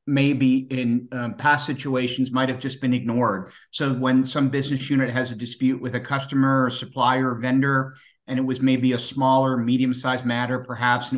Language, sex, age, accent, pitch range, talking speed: English, male, 50-69, American, 120-135 Hz, 185 wpm